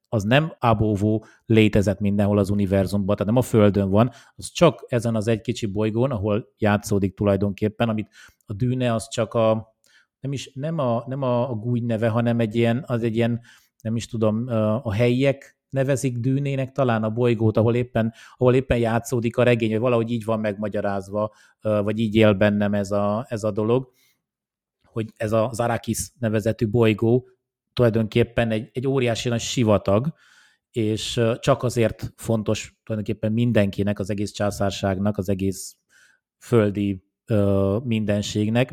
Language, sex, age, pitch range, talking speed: Hungarian, male, 30-49, 105-120 Hz, 150 wpm